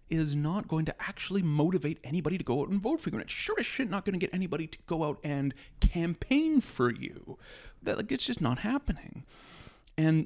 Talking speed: 220 wpm